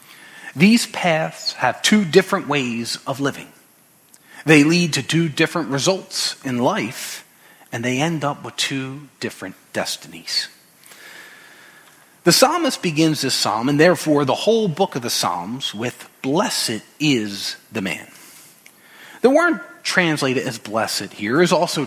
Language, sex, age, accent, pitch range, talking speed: English, male, 40-59, American, 125-180 Hz, 135 wpm